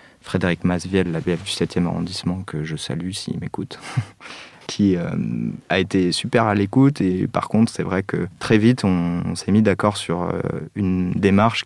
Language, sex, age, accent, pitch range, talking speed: French, male, 30-49, French, 90-105 Hz, 190 wpm